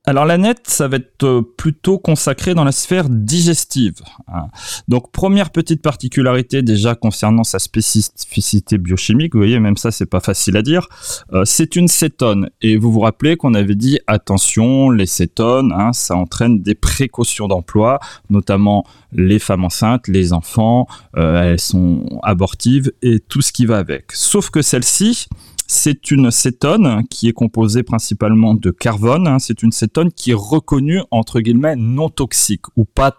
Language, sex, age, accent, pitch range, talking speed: French, male, 30-49, French, 100-130 Hz, 165 wpm